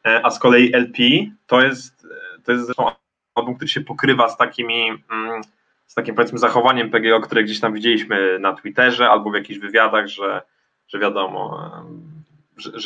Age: 20-39